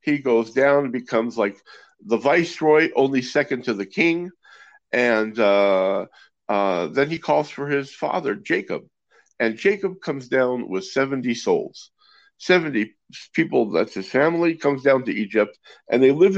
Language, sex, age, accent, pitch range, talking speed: English, male, 50-69, American, 125-200 Hz, 155 wpm